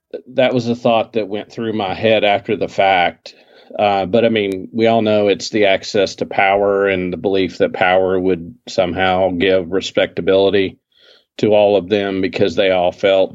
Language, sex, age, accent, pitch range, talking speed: English, male, 40-59, American, 95-120 Hz, 185 wpm